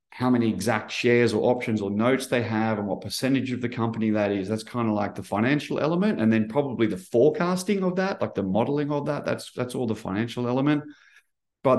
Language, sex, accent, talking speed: English, male, Australian, 225 wpm